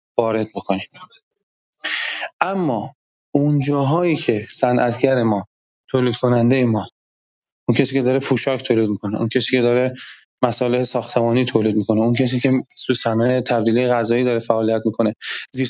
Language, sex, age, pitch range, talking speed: Persian, male, 30-49, 120-150 Hz, 140 wpm